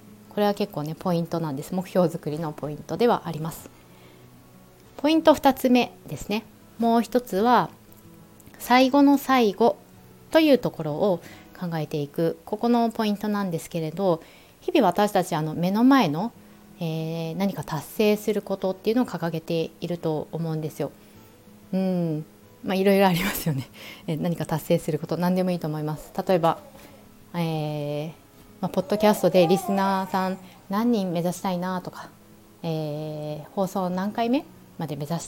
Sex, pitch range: female, 155-210 Hz